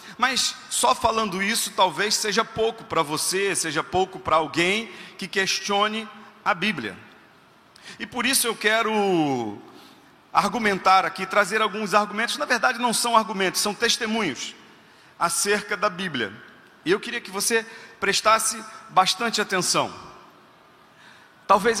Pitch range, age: 185-220 Hz, 40-59